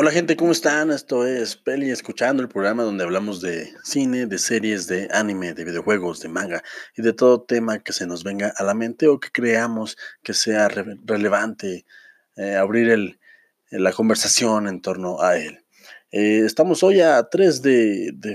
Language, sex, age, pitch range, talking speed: Spanish, male, 30-49, 100-130 Hz, 185 wpm